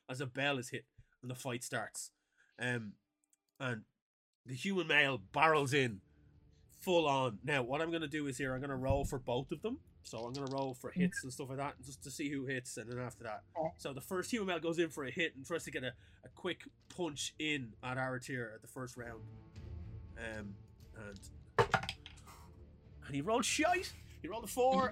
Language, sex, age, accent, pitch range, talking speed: English, male, 20-39, Irish, 115-160 Hz, 215 wpm